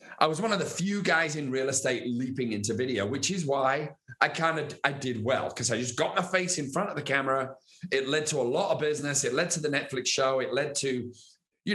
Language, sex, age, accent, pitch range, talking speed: English, male, 40-59, British, 130-160 Hz, 250 wpm